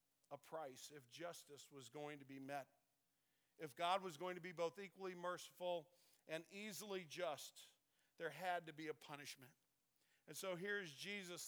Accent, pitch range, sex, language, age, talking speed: American, 155-215 Hz, male, English, 50-69, 160 wpm